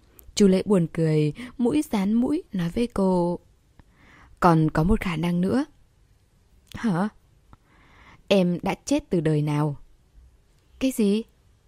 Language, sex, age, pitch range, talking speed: Vietnamese, female, 10-29, 165-220 Hz, 130 wpm